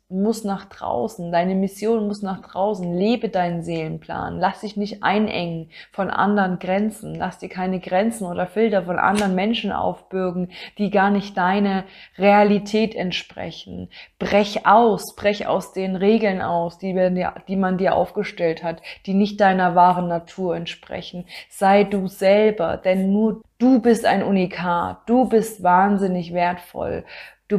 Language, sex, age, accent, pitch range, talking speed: German, female, 20-39, German, 180-205 Hz, 145 wpm